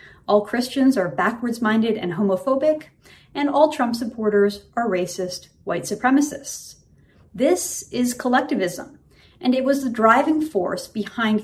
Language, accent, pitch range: English, American, 200-275 Hz